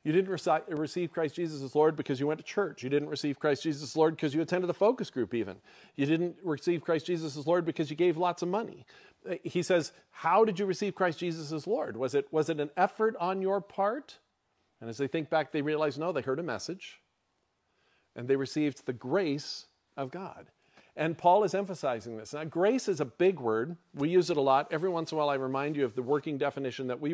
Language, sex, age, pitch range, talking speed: English, male, 40-59, 135-175 Hz, 235 wpm